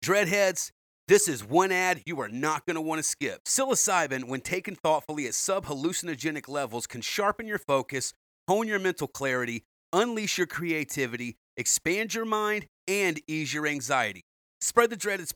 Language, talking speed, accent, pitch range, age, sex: English, 165 wpm, American, 150-205 Hz, 40-59, male